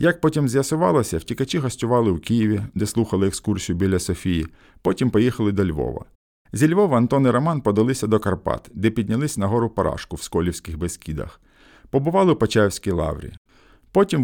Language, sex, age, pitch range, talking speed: Ukrainian, male, 50-69, 90-125 Hz, 155 wpm